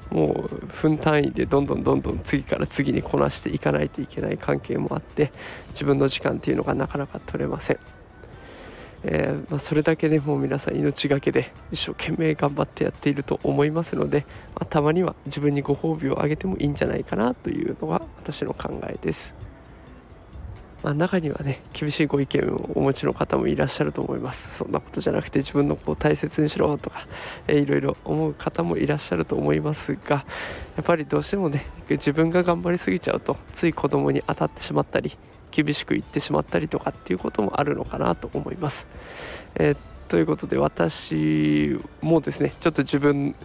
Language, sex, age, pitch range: Japanese, male, 20-39, 125-155 Hz